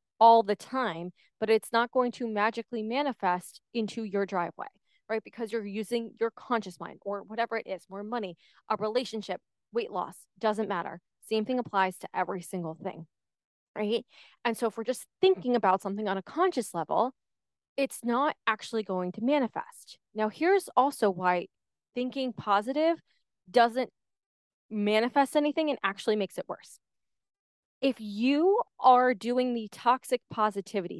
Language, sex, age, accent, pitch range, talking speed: English, female, 20-39, American, 200-250 Hz, 155 wpm